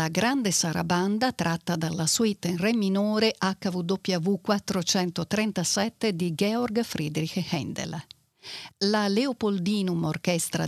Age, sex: 50-69, female